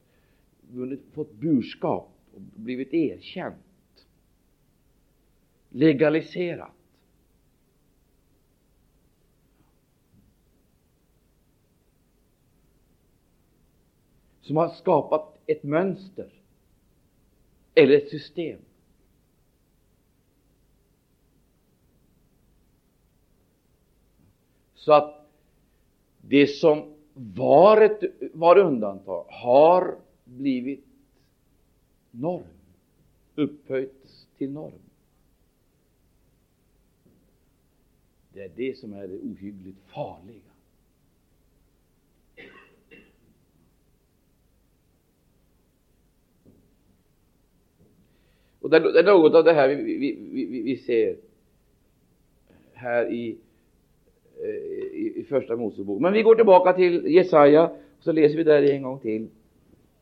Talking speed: 70 wpm